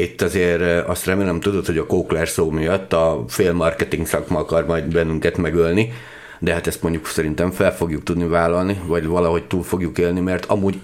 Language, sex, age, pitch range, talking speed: Hungarian, male, 50-69, 85-105 Hz, 190 wpm